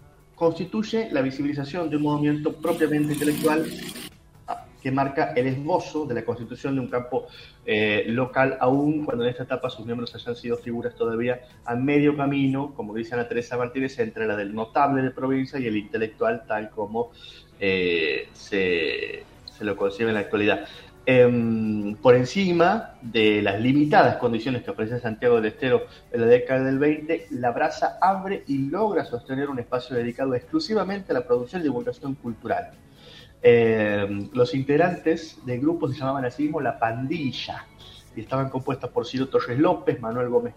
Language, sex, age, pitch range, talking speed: Spanish, male, 30-49, 120-155 Hz, 165 wpm